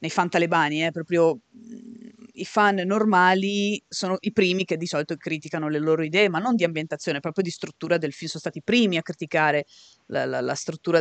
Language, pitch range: Italian, 150-215 Hz